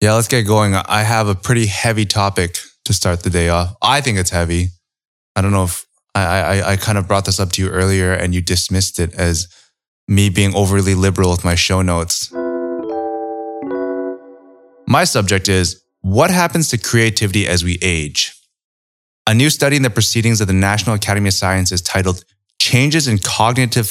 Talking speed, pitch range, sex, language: 185 wpm, 90-110 Hz, male, English